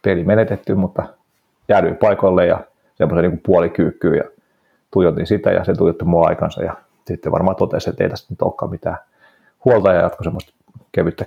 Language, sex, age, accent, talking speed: Finnish, male, 30-49, native, 170 wpm